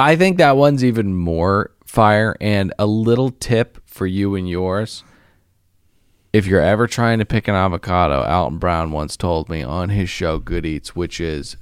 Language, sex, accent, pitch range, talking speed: English, male, American, 80-100 Hz, 180 wpm